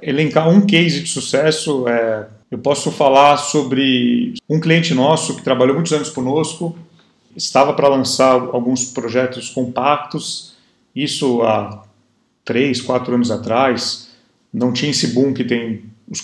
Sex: male